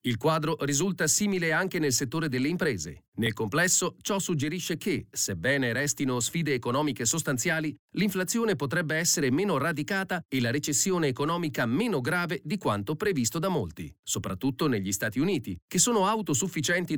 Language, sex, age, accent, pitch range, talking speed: Italian, male, 40-59, native, 130-185 Hz, 150 wpm